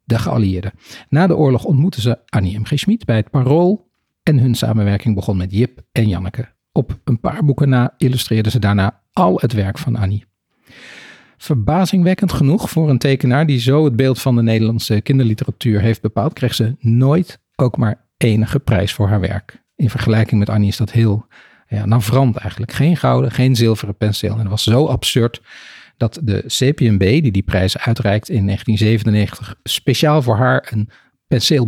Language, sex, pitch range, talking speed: Dutch, male, 110-140 Hz, 180 wpm